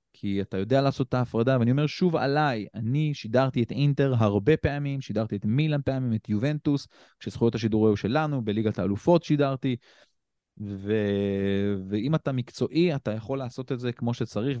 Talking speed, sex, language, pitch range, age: 160 wpm, male, Hebrew, 110-145 Hz, 20-39